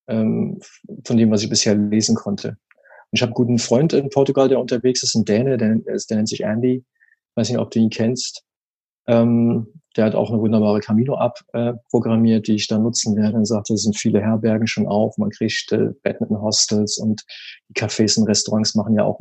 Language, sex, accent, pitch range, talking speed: German, male, German, 105-120 Hz, 210 wpm